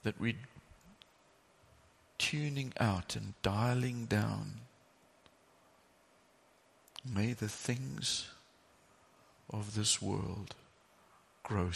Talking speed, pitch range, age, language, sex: 70 wpm, 100-125 Hz, 50-69, English, male